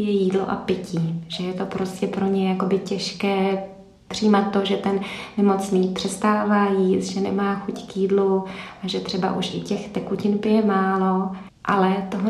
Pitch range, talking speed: 195-210 Hz, 170 wpm